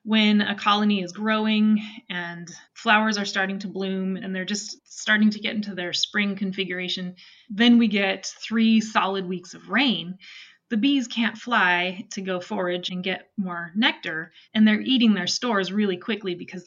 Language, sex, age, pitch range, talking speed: English, female, 20-39, 185-215 Hz, 175 wpm